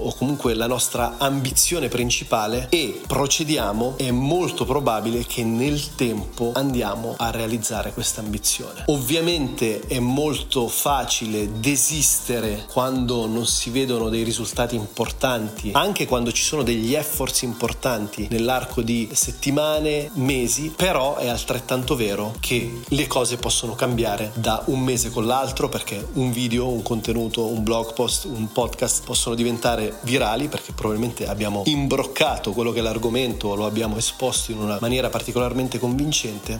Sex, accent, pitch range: male, native, 115-135 Hz